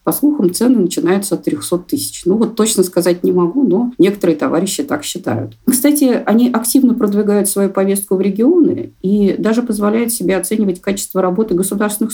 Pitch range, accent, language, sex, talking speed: 175-270 Hz, native, Russian, female, 170 wpm